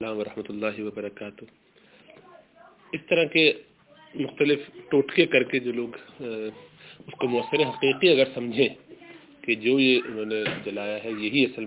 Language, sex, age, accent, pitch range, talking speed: English, male, 30-49, Indian, 110-140 Hz, 130 wpm